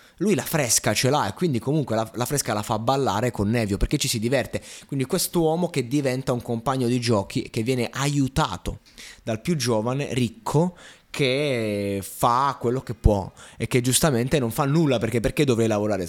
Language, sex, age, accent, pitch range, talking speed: Italian, male, 20-39, native, 105-135 Hz, 195 wpm